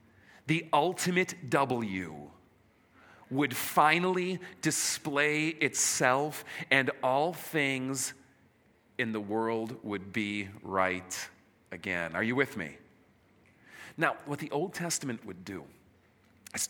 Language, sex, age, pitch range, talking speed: English, male, 40-59, 105-155 Hz, 105 wpm